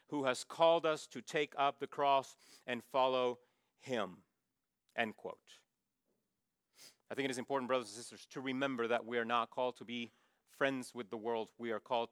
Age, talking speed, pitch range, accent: 40-59, 190 wpm, 120-150 Hz, American